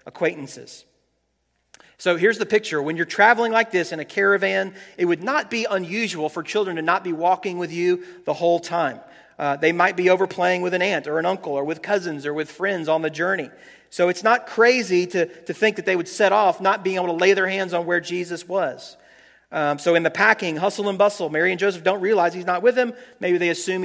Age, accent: 40-59, American